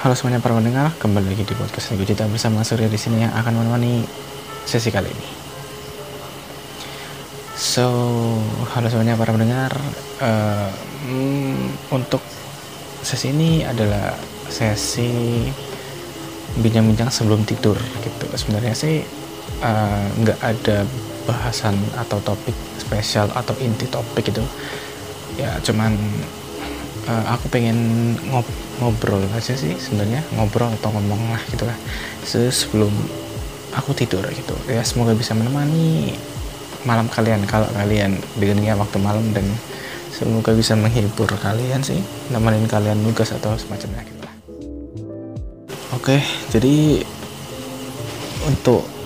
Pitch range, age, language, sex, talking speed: 110-130 Hz, 20-39, Indonesian, male, 115 wpm